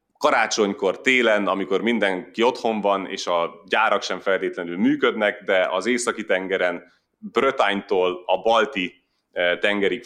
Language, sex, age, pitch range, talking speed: Hungarian, male, 30-49, 95-130 Hz, 115 wpm